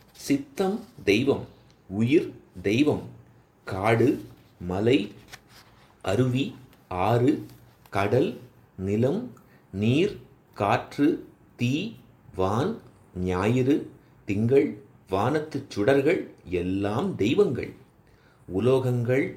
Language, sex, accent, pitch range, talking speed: Tamil, male, native, 100-140 Hz, 65 wpm